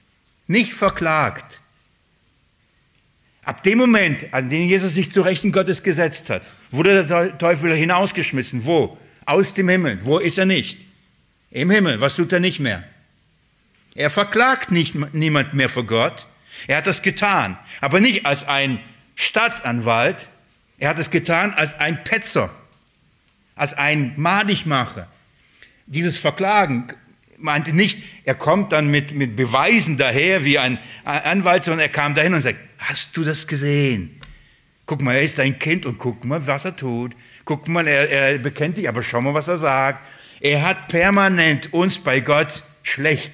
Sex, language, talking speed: male, German, 160 wpm